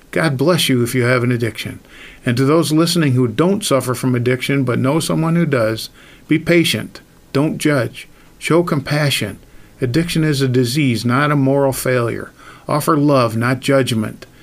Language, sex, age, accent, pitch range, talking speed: English, male, 50-69, American, 120-150 Hz, 165 wpm